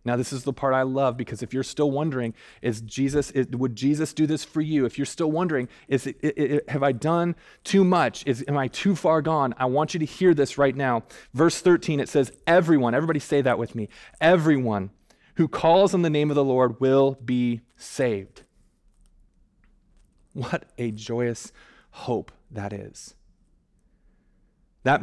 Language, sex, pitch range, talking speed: English, male, 130-160 Hz, 185 wpm